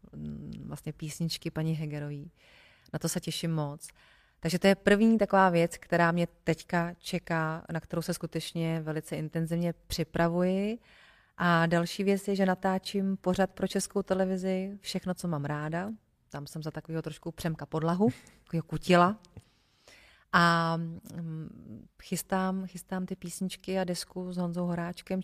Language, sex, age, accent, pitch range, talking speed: Czech, female, 30-49, native, 155-185 Hz, 140 wpm